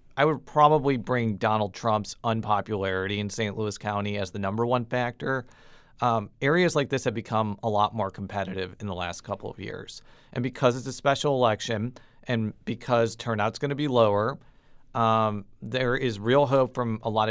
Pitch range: 105-130 Hz